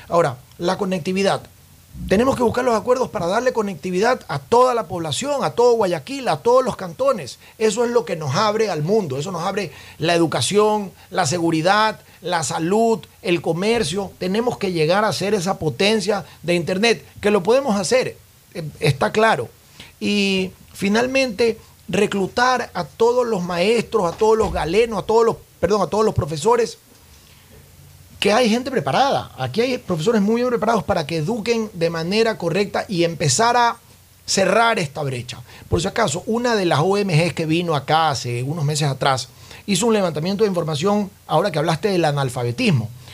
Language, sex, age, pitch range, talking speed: Spanish, male, 40-59, 155-225 Hz, 170 wpm